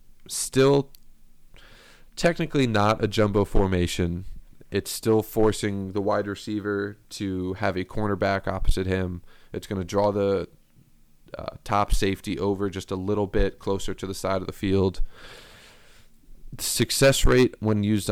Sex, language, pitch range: male, English, 90-110 Hz